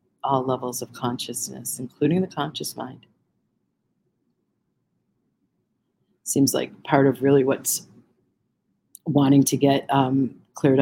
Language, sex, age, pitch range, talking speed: English, female, 50-69, 130-140 Hz, 105 wpm